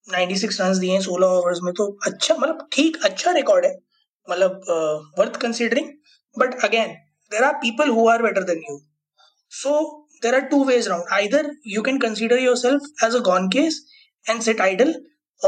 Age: 20-39